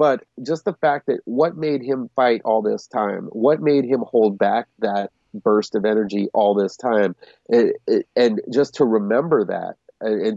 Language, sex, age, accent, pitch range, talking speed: English, male, 30-49, American, 100-140 Hz, 175 wpm